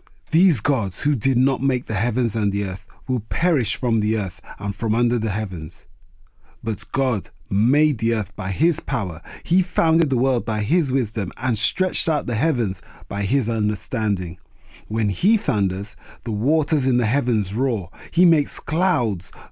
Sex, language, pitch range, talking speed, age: male, English, 105-145 Hz, 170 wpm, 30-49